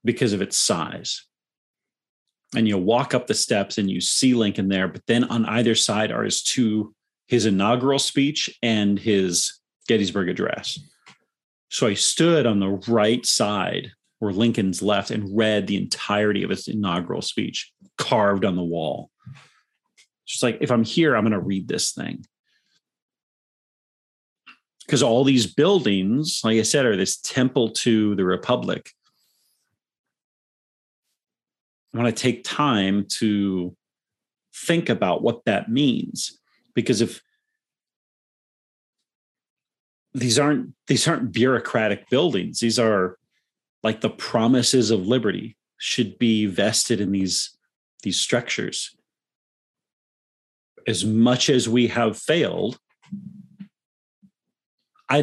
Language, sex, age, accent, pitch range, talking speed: English, male, 40-59, American, 100-130 Hz, 125 wpm